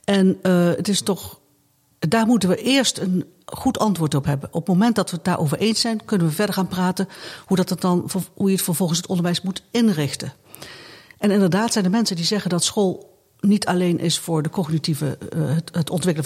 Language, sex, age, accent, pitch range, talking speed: Dutch, female, 60-79, Dutch, 155-190 Hz, 220 wpm